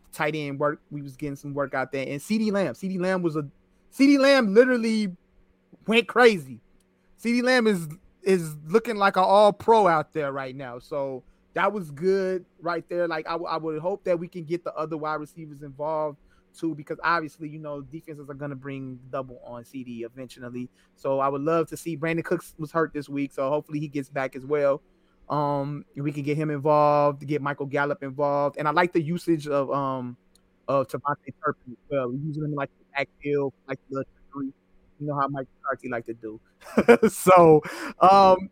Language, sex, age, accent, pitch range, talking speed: English, male, 20-39, American, 135-175 Hz, 195 wpm